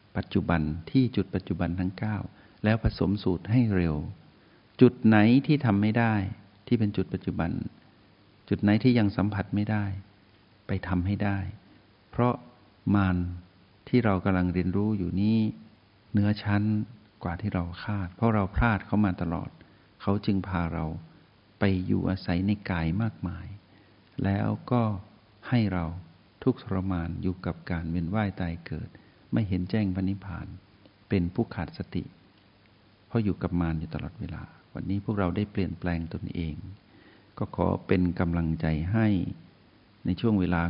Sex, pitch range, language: male, 90-105 Hz, Thai